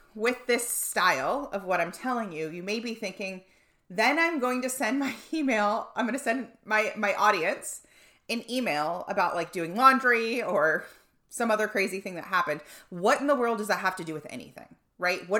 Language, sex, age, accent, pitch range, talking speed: English, female, 30-49, American, 185-255 Hz, 200 wpm